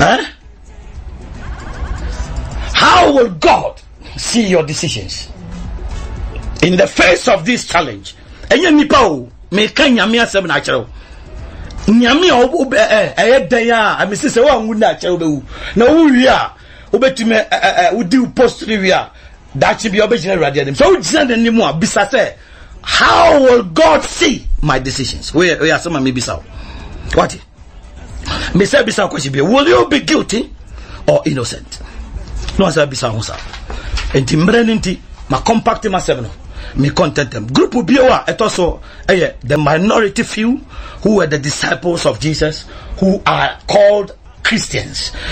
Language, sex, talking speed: English, male, 75 wpm